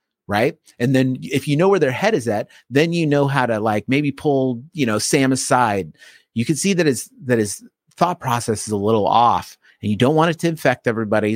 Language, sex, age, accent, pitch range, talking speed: English, male, 30-49, American, 105-145 Hz, 230 wpm